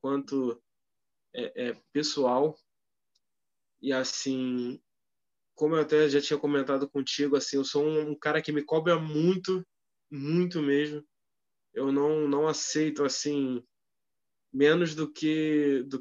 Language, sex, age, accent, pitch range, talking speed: Portuguese, male, 20-39, Brazilian, 145-175 Hz, 125 wpm